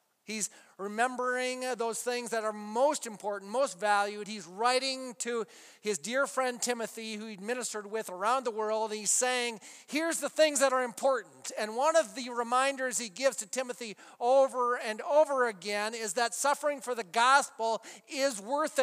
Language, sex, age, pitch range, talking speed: English, male, 40-59, 215-275 Hz, 170 wpm